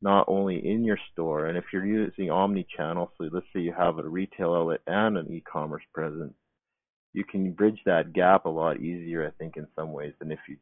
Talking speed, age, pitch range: 225 wpm, 40-59, 85-95 Hz